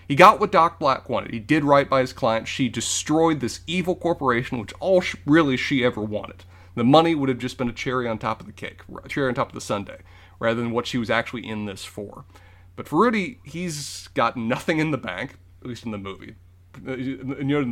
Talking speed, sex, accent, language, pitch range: 235 wpm, male, American, English, 100-135 Hz